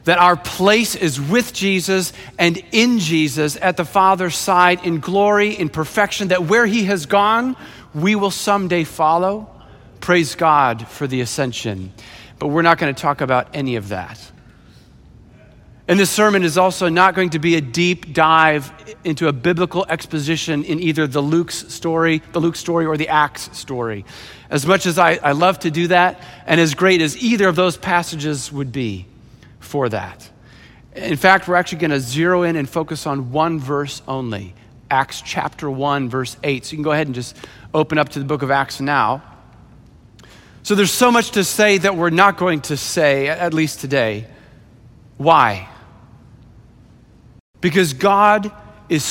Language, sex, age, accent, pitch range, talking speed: English, male, 40-59, American, 135-180 Hz, 175 wpm